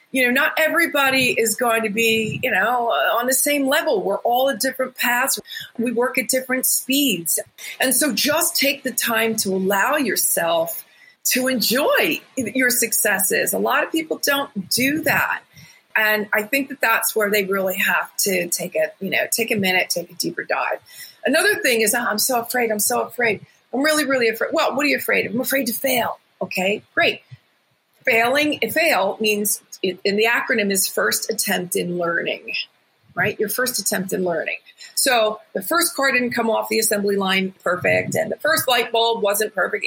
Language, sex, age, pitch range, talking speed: English, female, 40-59, 210-280 Hz, 190 wpm